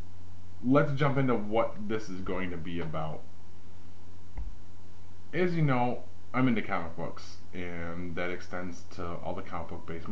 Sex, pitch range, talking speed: male, 90-95 Hz, 155 wpm